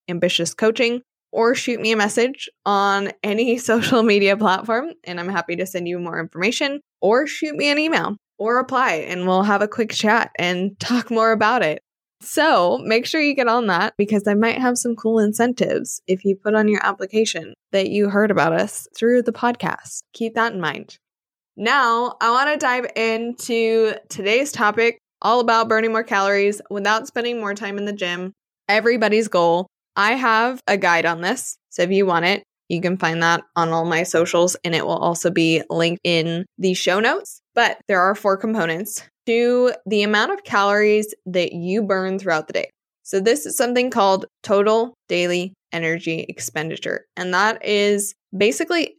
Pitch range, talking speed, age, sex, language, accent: 185-230 Hz, 185 wpm, 20-39, female, English, American